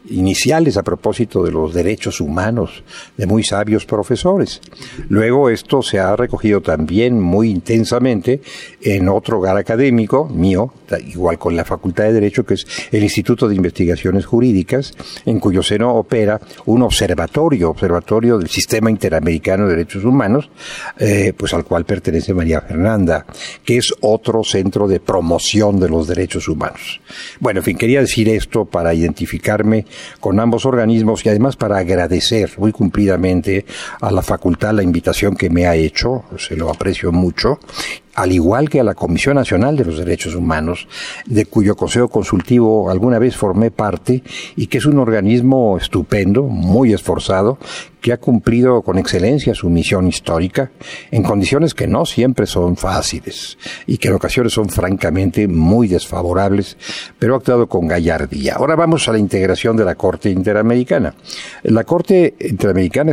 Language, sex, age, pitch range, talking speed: Spanish, male, 60-79, 90-120 Hz, 155 wpm